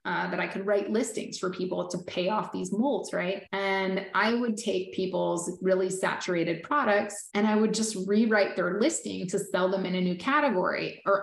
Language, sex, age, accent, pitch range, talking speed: English, female, 30-49, American, 185-230 Hz, 200 wpm